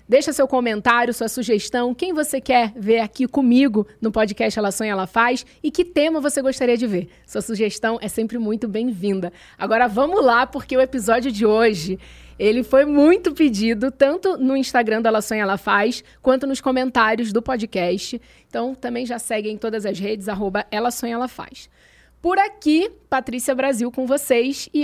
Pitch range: 225-280 Hz